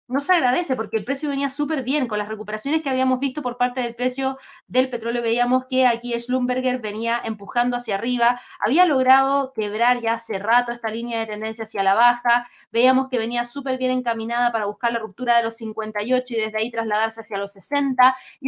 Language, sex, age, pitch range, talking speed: Spanish, female, 20-39, 225-270 Hz, 205 wpm